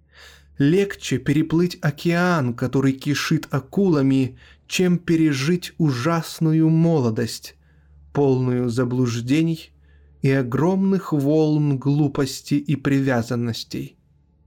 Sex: male